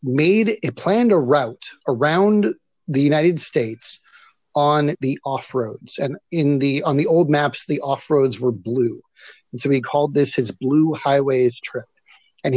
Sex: male